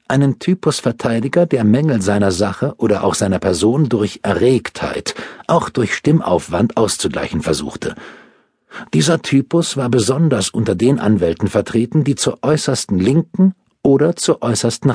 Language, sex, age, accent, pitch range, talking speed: German, male, 50-69, German, 105-145 Hz, 130 wpm